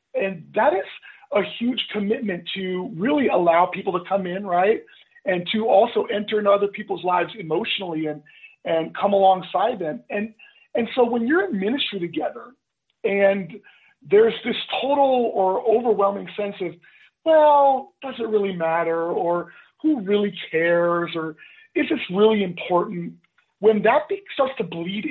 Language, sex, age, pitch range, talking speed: English, male, 40-59, 180-250 Hz, 155 wpm